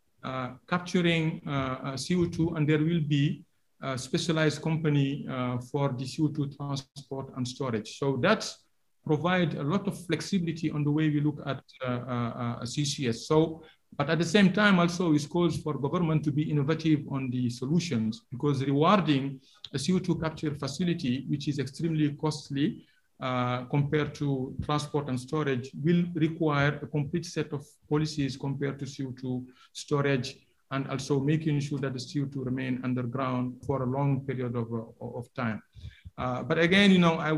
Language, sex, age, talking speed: English, male, 50-69, 165 wpm